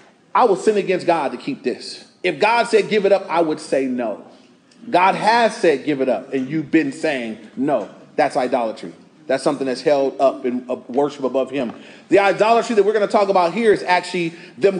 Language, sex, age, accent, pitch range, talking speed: English, male, 30-49, American, 155-200 Hz, 210 wpm